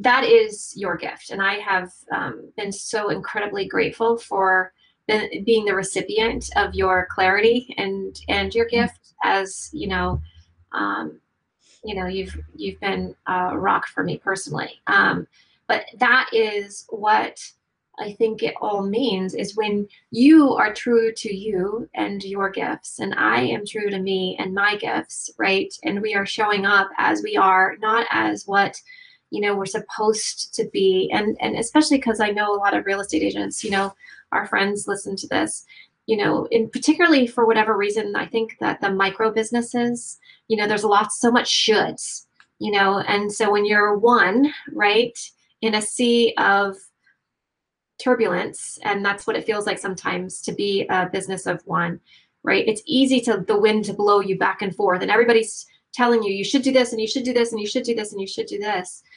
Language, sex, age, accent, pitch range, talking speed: English, female, 20-39, American, 195-235 Hz, 190 wpm